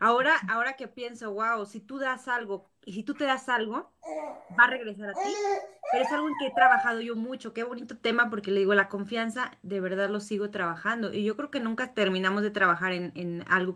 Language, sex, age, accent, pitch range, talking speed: Spanish, female, 30-49, Mexican, 200-250 Hz, 230 wpm